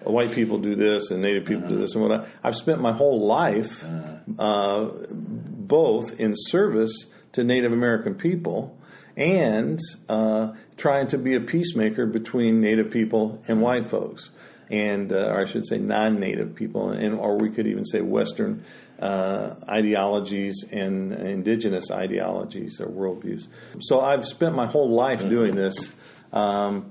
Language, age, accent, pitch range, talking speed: English, 50-69, American, 105-125 Hz, 155 wpm